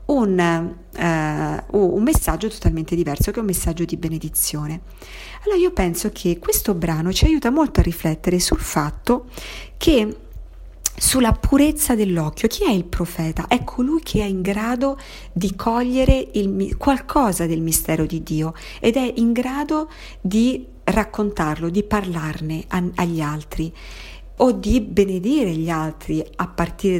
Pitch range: 170-230 Hz